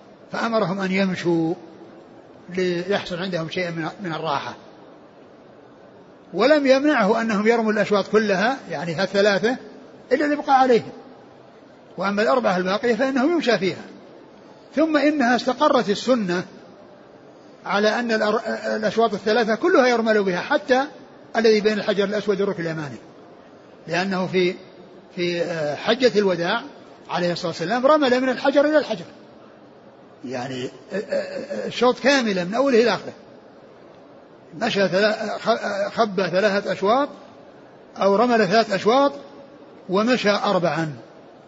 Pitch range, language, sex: 180-235 Hz, Arabic, male